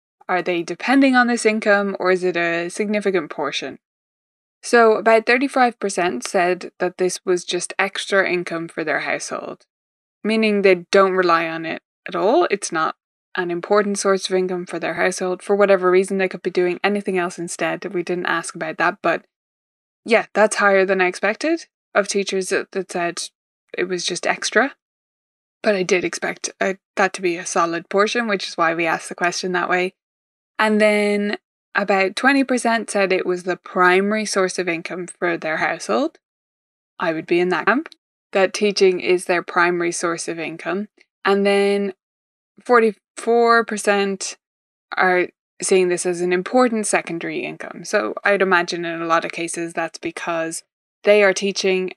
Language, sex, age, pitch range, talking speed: English, female, 20-39, 175-205 Hz, 165 wpm